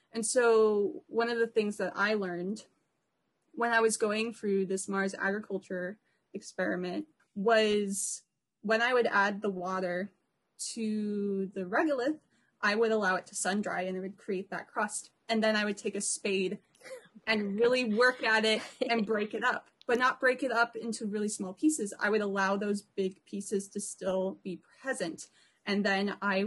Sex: female